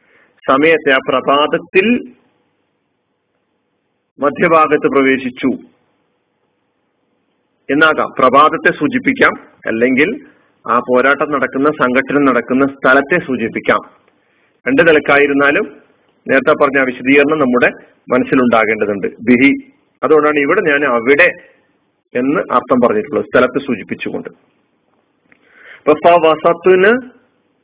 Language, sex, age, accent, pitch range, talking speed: Malayalam, male, 40-59, native, 130-170 Hz, 75 wpm